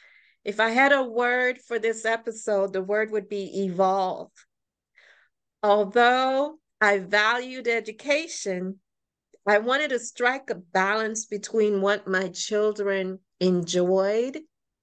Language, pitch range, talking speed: English, 195-240 Hz, 115 wpm